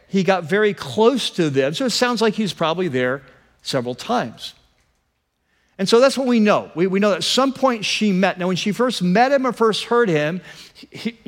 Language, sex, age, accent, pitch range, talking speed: English, male, 50-69, American, 160-225 Hz, 220 wpm